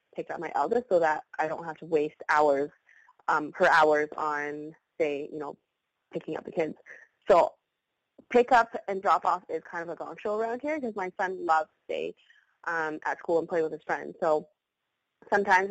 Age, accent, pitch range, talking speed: 20-39, American, 160-210 Hz, 205 wpm